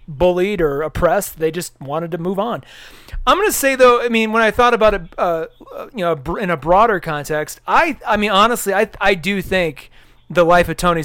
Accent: American